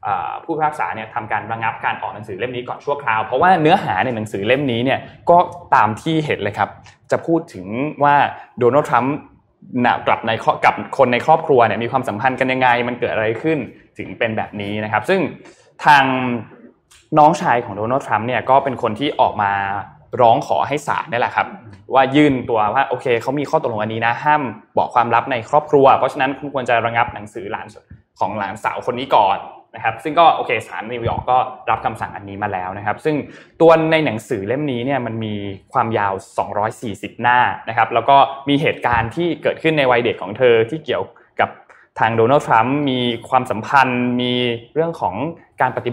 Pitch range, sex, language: 110-145 Hz, male, Thai